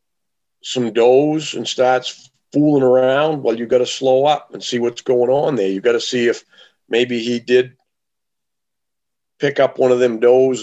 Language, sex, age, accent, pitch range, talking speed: English, male, 50-69, American, 120-140 Hz, 180 wpm